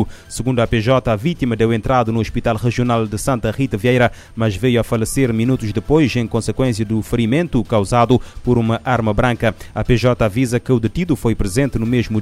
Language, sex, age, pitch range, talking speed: Portuguese, male, 30-49, 115-135 Hz, 190 wpm